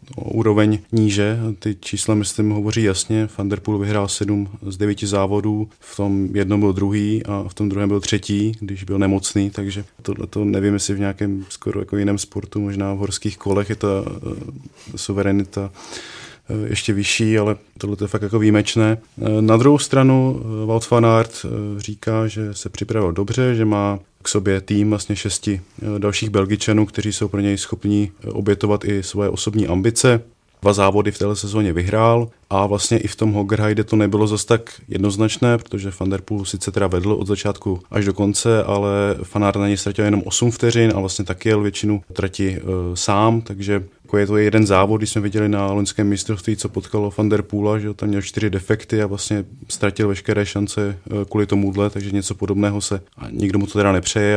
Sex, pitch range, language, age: male, 100-110 Hz, Czech, 30-49